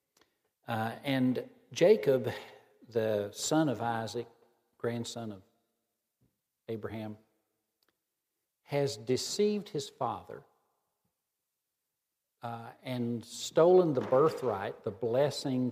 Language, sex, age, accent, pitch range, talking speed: English, male, 50-69, American, 115-135 Hz, 80 wpm